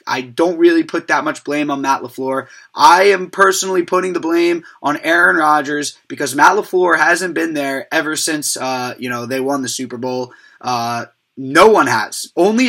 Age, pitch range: 20-39, 135-215 Hz